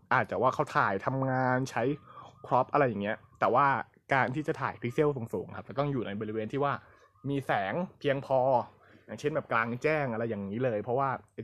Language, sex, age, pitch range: Thai, male, 20-39, 110-145 Hz